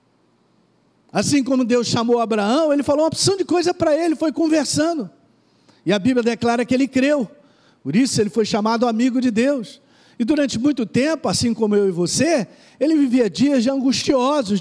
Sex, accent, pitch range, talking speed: male, Brazilian, 205-275 Hz, 175 wpm